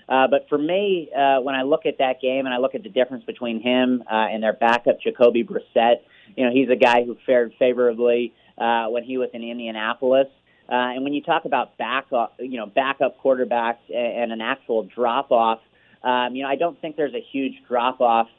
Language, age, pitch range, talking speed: English, 30-49, 120-130 Hz, 210 wpm